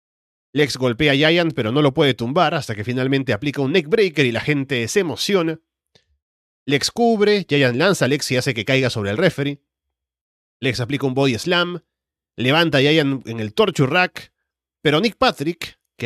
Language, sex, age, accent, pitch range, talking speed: Spanish, male, 30-49, Argentinian, 120-170 Hz, 185 wpm